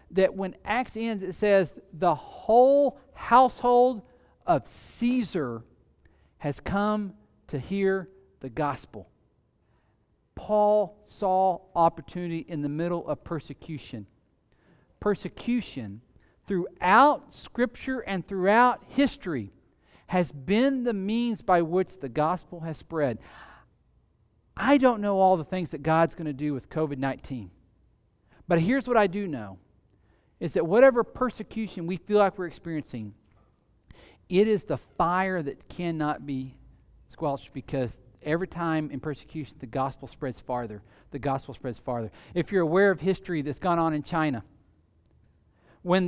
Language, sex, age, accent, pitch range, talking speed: English, male, 50-69, American, 135-195 Hz, 130 wpm